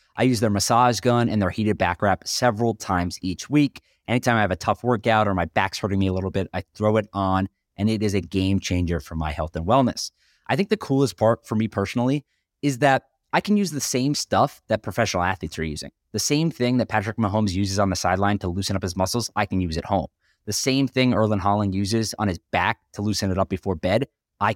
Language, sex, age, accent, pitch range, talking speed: English, male, 20-39, American, 95-120 Hz, 245 wpm